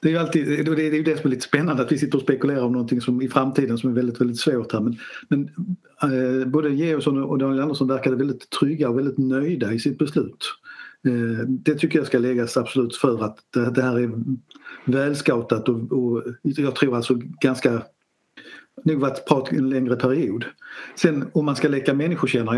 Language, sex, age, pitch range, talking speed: Swedish, male, 50-69, 125-145 Hz, 200 wpm